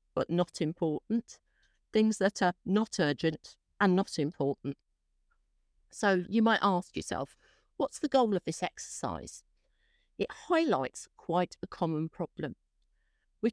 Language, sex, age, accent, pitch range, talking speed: English, female, 50-69, British, 160-210 Hz, 130 wpm